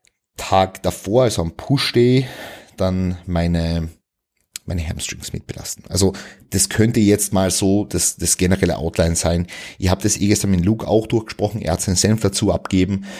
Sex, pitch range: male, 85-105 Hz